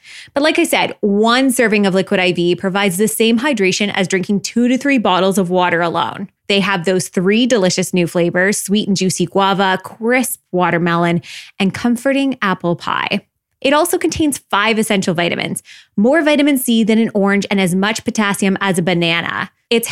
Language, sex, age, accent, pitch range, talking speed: English, female, 20-39, American, 185-245 Hz, 180 wpm